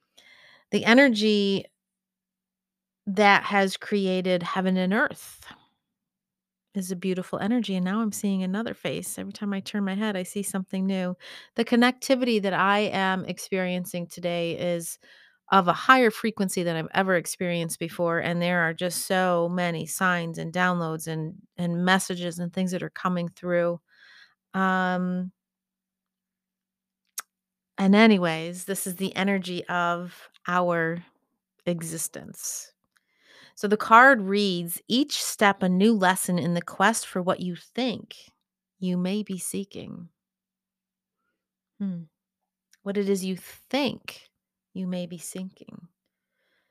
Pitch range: 180-205 Hz